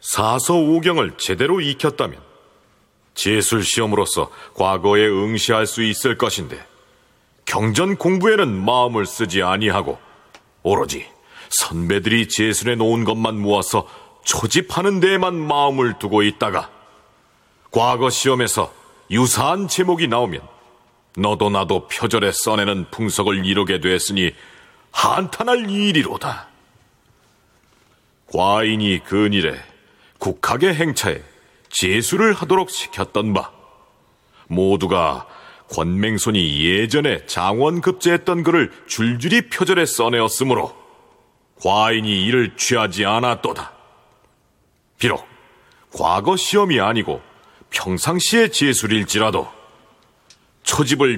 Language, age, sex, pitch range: Korean, 40-59, male, 100-170 Hz